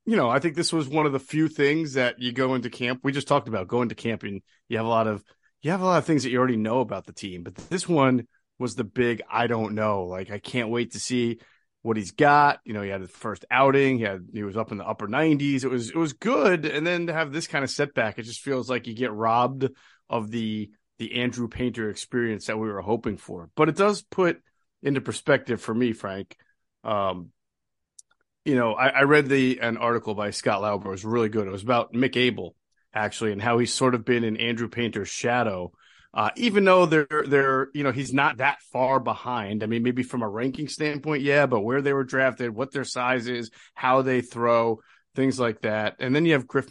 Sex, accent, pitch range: male, American, 110-140 Hz